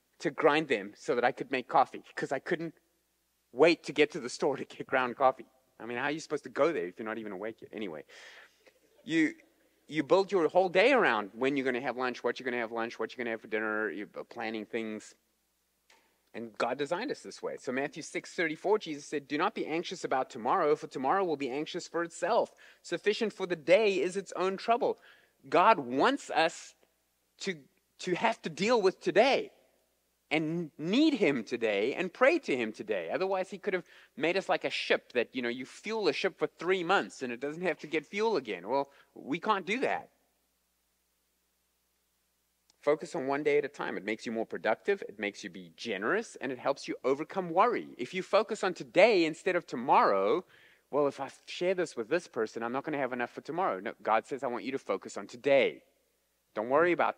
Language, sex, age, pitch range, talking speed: English, male, 30-49, 120-190 Hz, 220 wpm